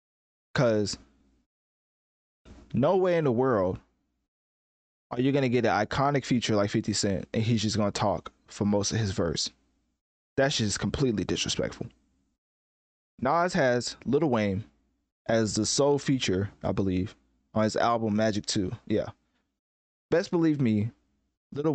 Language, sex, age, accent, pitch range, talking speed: English, male, 20-39, American, 100-125 Hz, 145 wpm